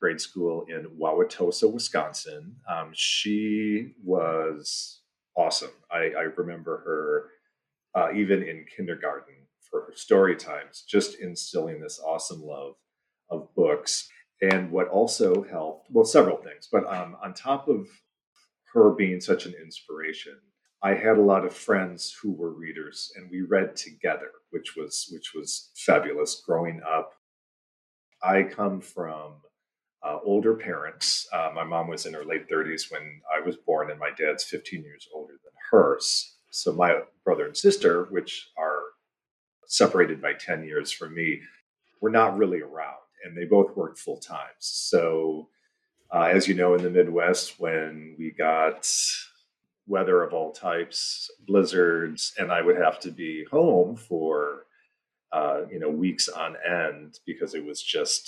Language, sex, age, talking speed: English, male, 40-59, 150 wpm